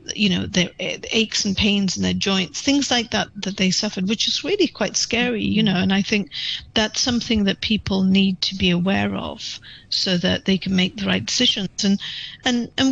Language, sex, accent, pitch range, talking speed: English, female, British, 185-220 Hz, 210 wpm